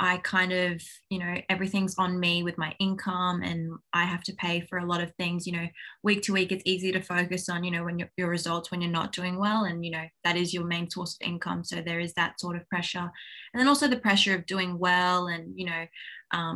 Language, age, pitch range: English, 20-39, 175-190 Hz